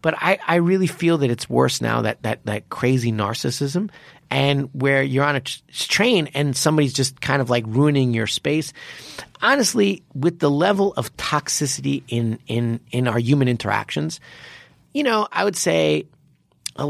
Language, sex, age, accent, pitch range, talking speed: English, male, 30-49, American, 125-170 Hz, 170 wpm